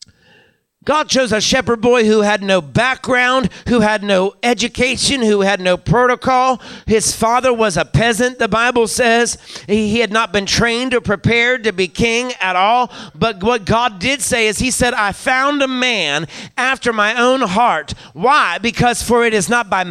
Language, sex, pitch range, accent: English, male, 200-240 Hz, American